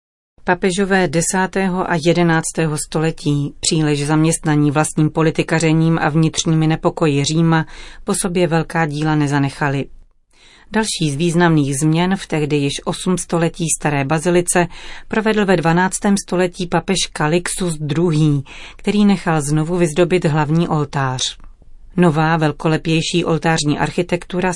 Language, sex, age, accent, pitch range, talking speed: Czech, female, 40-59, native, 155-180 Hz, 110 wpm